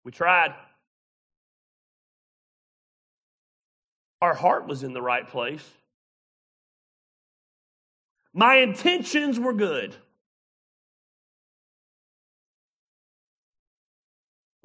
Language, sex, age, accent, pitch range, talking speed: English, male, 40-59, American, 130-205 Hz, 55 wpm